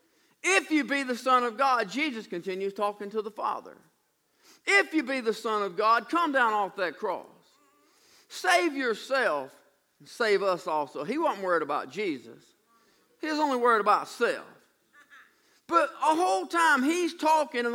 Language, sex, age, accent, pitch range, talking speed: English, male, 50-69, American, 225-320 Hz, 165 wpm